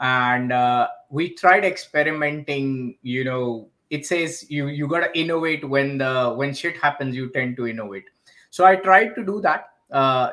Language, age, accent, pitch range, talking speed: English, 20-39, Indian, 125-160 Hz, 165 wpm